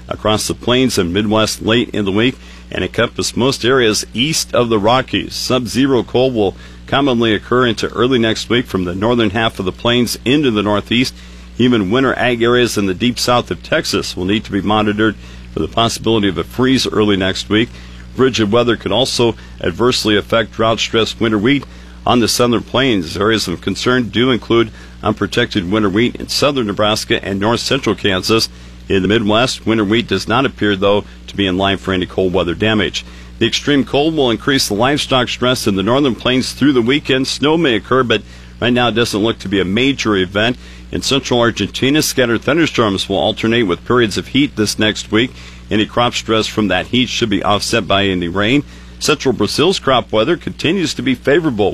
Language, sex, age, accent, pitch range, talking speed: English, male, 50-69, American, 95-120 Hz, 195 wpm